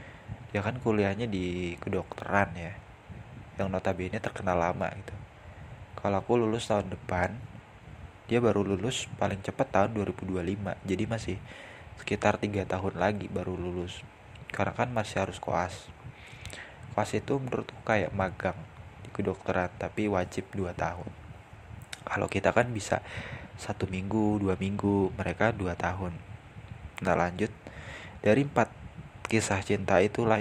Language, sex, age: Indonesian, male, 20-39